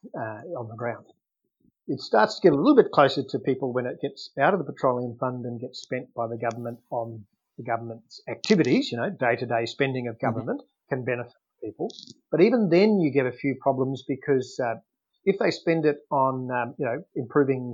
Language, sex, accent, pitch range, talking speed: English, male, Australian, 120-145 Hz, 205 wpm